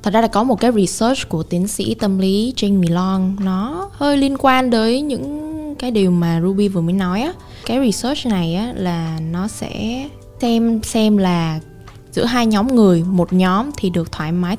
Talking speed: 200 wpm